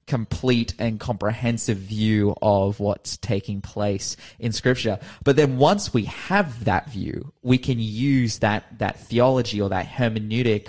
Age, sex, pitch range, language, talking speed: 20-39, male, 105-130 Hz, English, 145 wpm